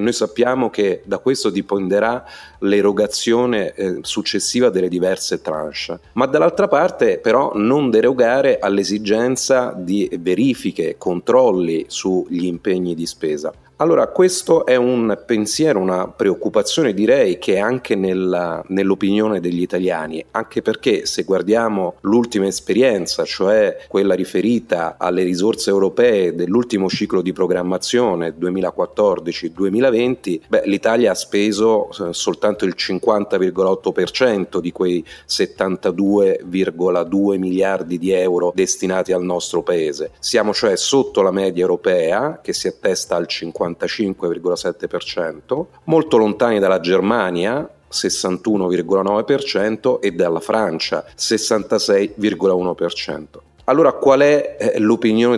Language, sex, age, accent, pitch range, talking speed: Italian, male, 30-49, native, 95-130 Hz, 105 wpm